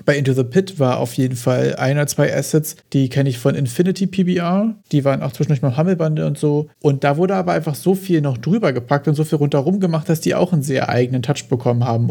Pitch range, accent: 125-155 Hz, German